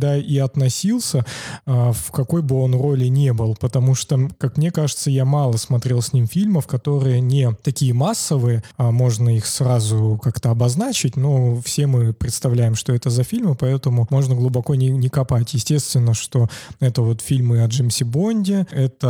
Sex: male